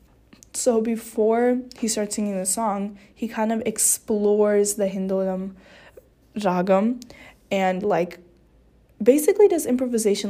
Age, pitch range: 10-29, 195-230 Hz